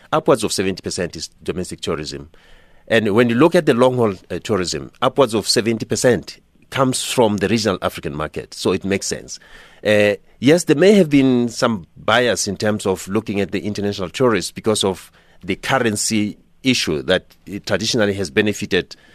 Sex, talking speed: male, 165 wpm